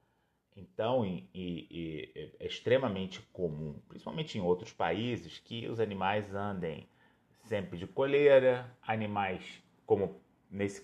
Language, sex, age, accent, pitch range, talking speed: Portuguese, male, 30-49, Brazilian, 95-115 Hz, 100 wpm